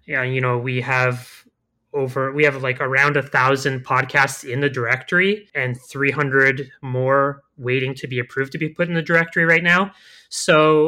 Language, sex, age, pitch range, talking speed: English, male, 30-49, 125-145 Hz, 175 wpm